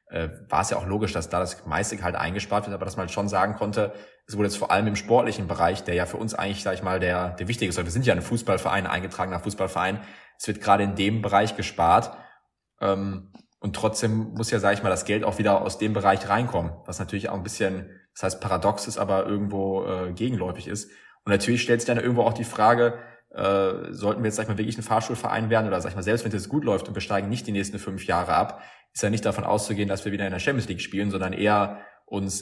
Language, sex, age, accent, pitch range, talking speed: German, male, 20-39, German, 95-110 Hz, 250 wpm